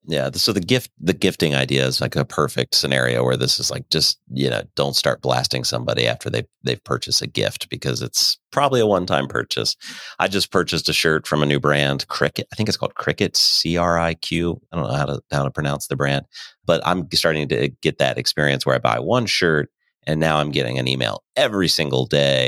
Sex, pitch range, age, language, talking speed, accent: male, 65-85 Hz, 40-59, English, 220 wpm, American